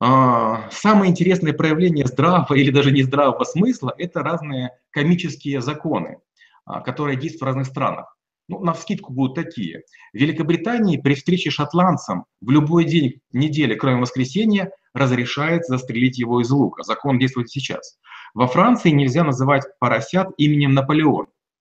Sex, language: male, Russian